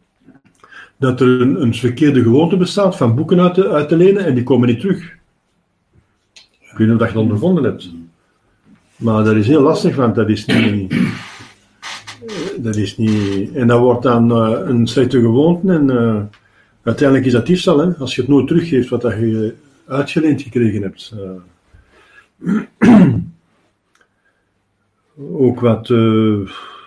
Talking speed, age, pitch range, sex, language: 155 wpm, 50-69, 110-145 Hz, male, Dutch